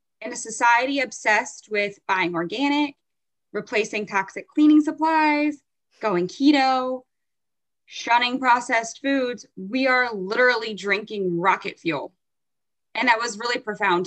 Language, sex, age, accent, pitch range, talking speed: English, female, 20-39, American, 195-255 Hz, 115 wpm